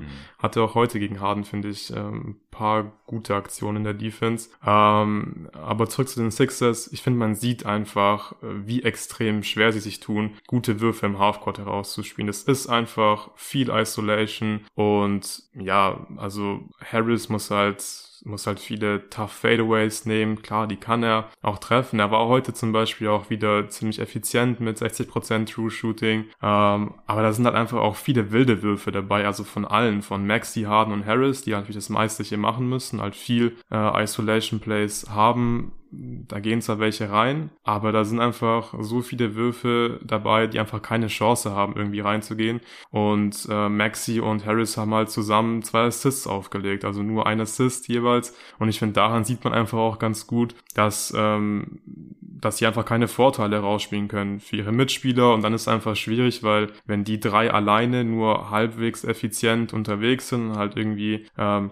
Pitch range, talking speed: 105-115 Hz, 175 wpm